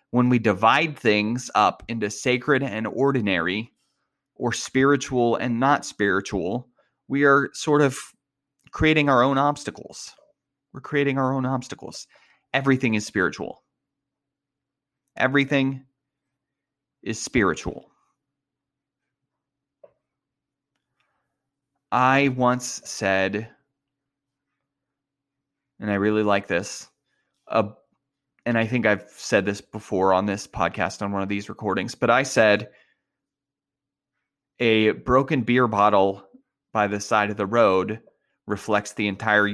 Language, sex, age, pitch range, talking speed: English, male, 30-49, 105-140 Hz, 110 wpm